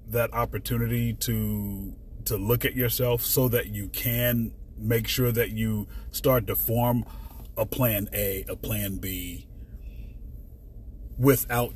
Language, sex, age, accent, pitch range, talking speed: English, male, 30-49, American, 95-115 Hz, 130 wpm